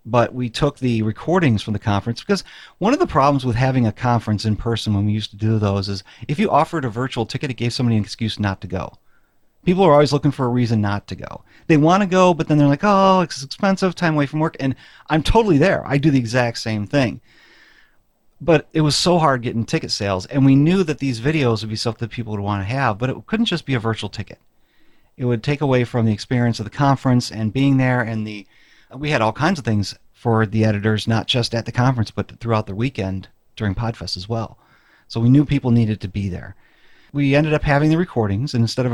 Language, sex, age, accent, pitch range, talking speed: English, male, 40-59, American, 110-135 Hz, 245 wpm